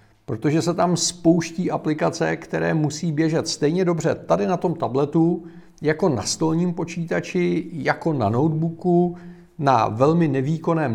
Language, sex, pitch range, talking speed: Czech, male, 130-170 Hz, 130 wpm